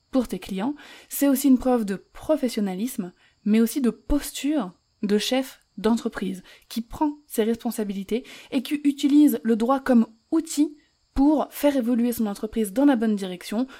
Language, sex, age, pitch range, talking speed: French, female, 20-39, 210-255 Hz, 155 wpm